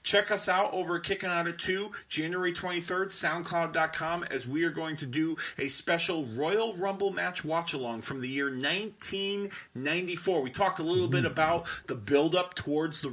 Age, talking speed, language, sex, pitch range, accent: 30-49, 170 wpm, English, male, 140-185 Hz, American